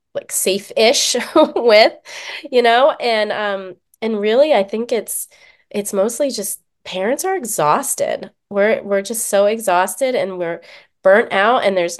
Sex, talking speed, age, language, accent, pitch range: female, 145 wpm, 20-39, English, American, 185-225 Hz